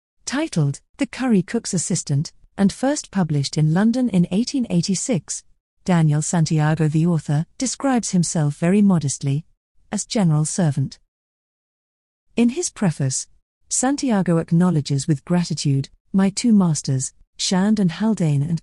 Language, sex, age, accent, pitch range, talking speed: English, female, 50-69, British, 155-205 Hz, 120 wpm